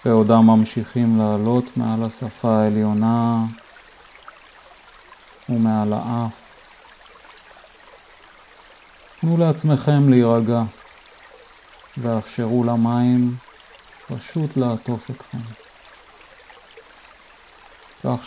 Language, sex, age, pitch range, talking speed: Hebrew, male, 50-69, 115-130 Hz, 55 wpm